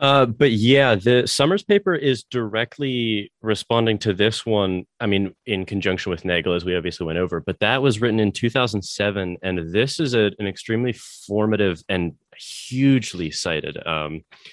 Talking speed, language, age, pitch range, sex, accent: 160 wpm, English, 30-49, 90-120 Hz, male, American